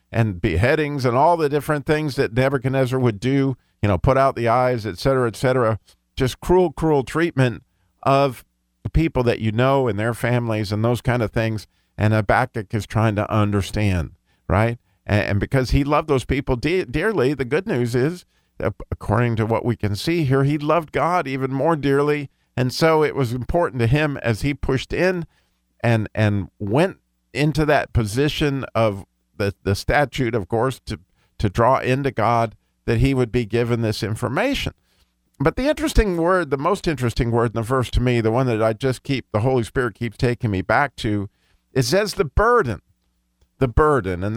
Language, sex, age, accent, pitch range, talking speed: English, male, 50-69, American, 105-140 Hz, 190 wpm